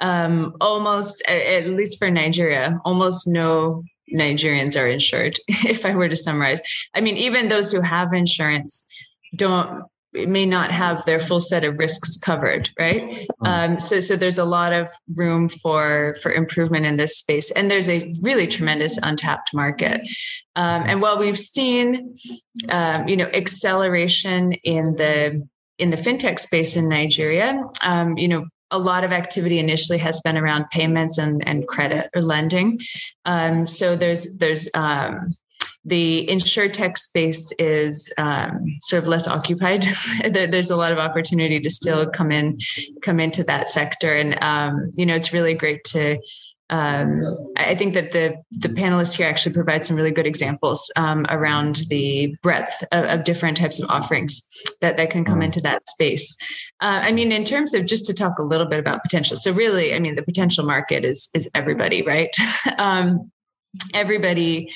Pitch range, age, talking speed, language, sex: 155-185 Hz, 20-39, 170 wpm, English, female